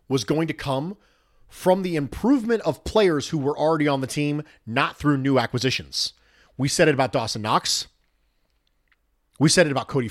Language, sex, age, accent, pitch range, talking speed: English, male, 40-59, American, 110-170 Hz, 180 wpm